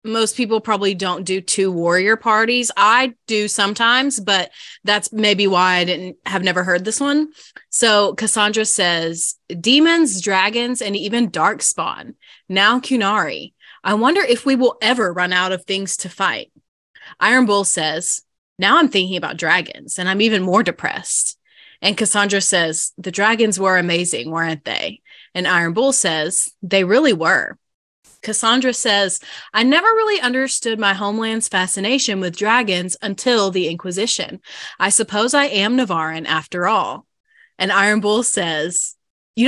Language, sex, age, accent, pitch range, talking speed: English, female, 20-39, American, 180-235 Hz, 150 wpm